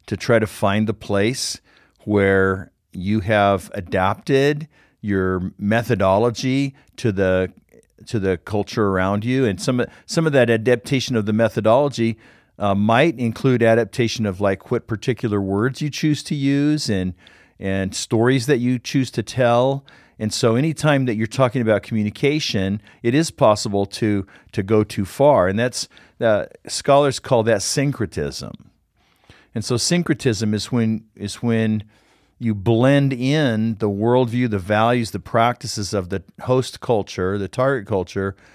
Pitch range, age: 100-125 Hz, 50-69